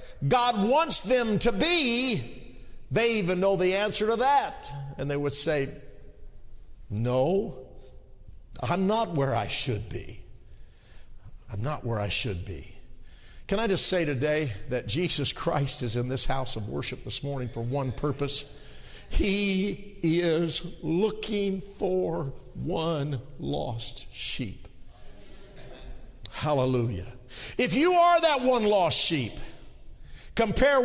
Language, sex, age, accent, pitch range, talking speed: English, male, 50-69, American, 120-195 Hz, 125 wpm